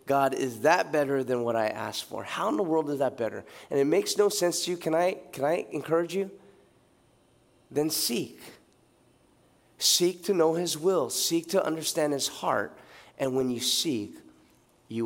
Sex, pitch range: male, 125-155 Hz